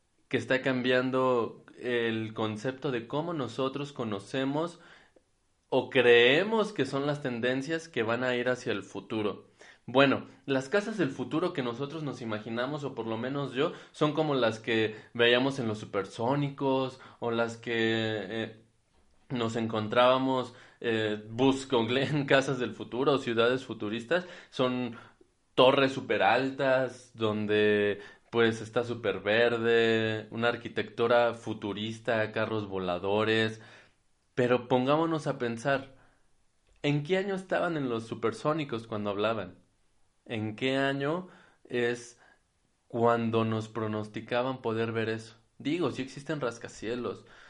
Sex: male